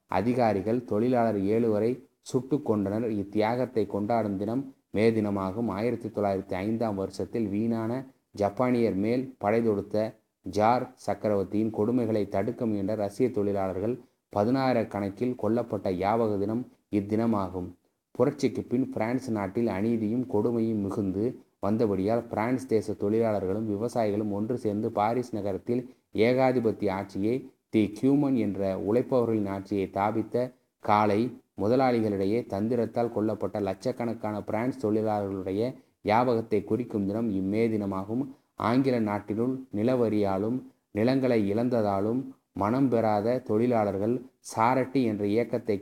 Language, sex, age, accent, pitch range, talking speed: Tamil, male, 30-49, native, 100-120 Hz, 100 wpm